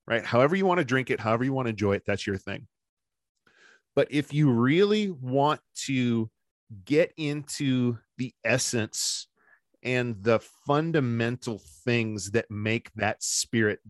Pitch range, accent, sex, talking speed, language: 110-145 Hz, American, male, 145 wpm, English